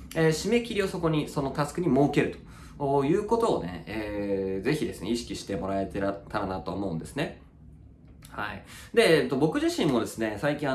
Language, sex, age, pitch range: Japanese, male, 20-39, 105-165 Hz